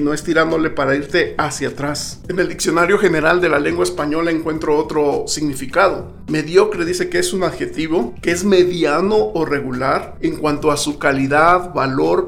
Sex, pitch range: male, 145-190 Hz